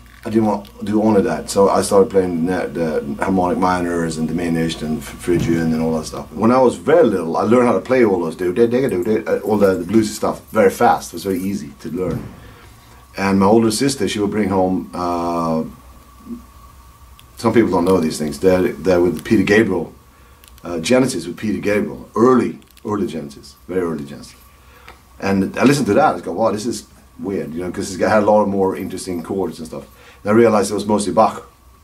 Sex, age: male, 40-59